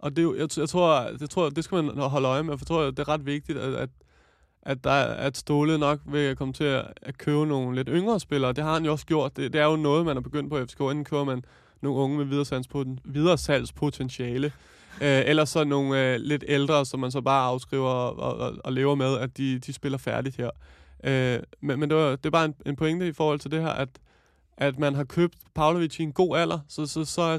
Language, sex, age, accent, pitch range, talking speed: Danish, male, 20-39, native, 130-155 Hz, 265 wpm